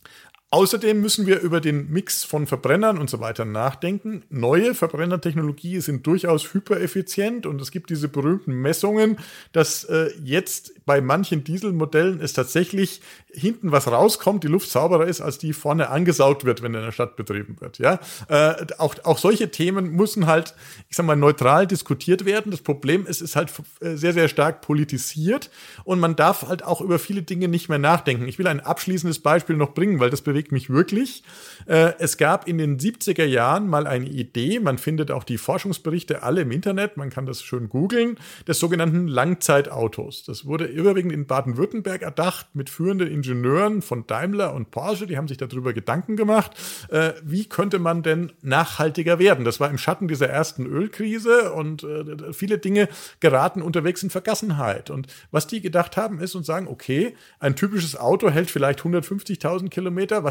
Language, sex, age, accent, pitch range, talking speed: German, male, 40-59, German, 145-185 Hz, 175 wpm